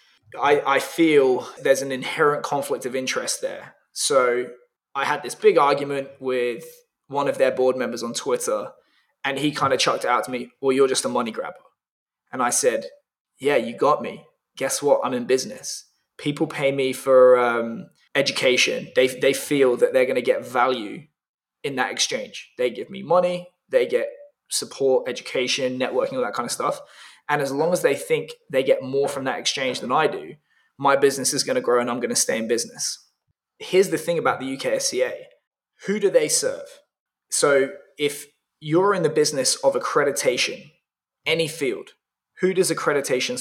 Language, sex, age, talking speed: English, male, 20-39, 185 wpm